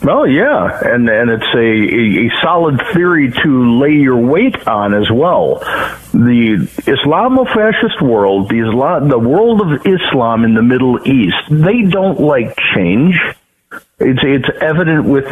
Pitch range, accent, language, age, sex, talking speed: 120-160 Hz, American, English, 50-69, male, 145 wpm